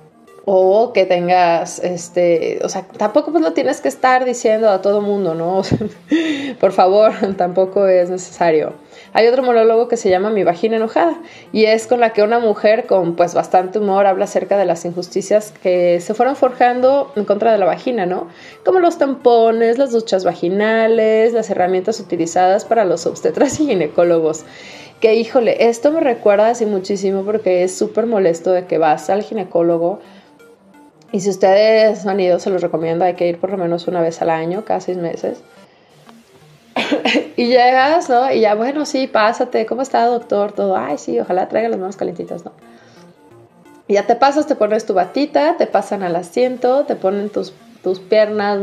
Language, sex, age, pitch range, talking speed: Spanish, female, 20-39, 180-235 Hz, 180 wpm